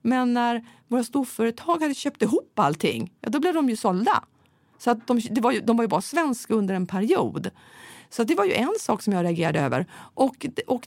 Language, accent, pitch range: Swedish, native, 200-265 Hz